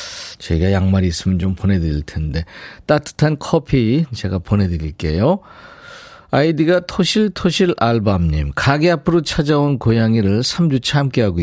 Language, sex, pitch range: Korean, male, 95-155 Hz